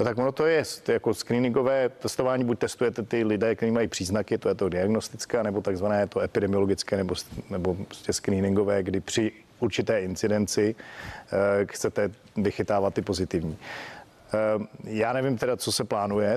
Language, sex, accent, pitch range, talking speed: Czech, male, native, 100-115 Hz, 145 wpm